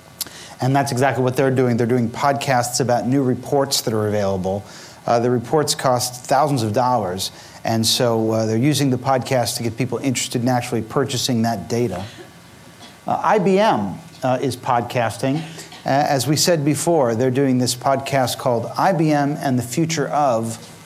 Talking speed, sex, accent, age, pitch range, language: 165 wpm, male, American, 40-59, 120-145 Hz, English